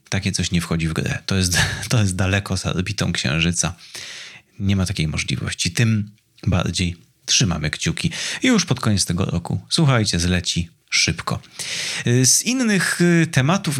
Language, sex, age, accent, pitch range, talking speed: Polish, male, 30-49, native, 95-130 Hz, 145 wpm